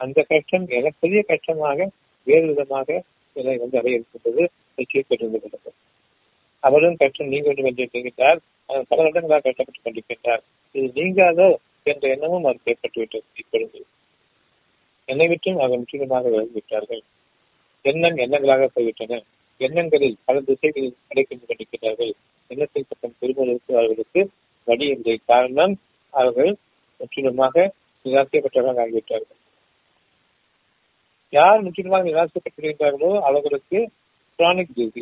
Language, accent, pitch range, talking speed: Tamil, native, 130-190 Hz, 80 wpm